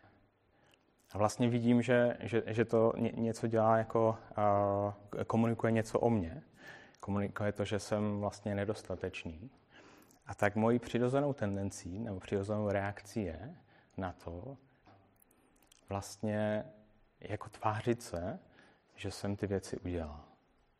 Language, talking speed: Czech, 115 wpm